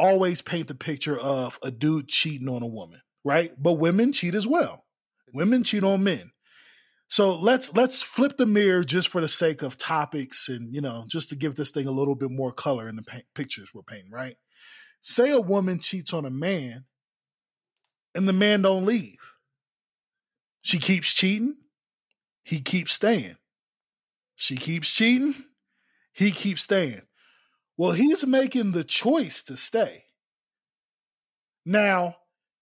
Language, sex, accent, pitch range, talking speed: English, male, American, 140-205 Hz, 155 wpm